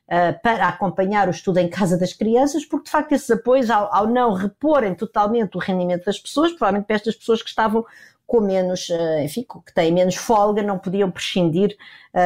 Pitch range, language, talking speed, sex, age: 180-240 Hz, Portuguese, 190 wpm, female, 50-69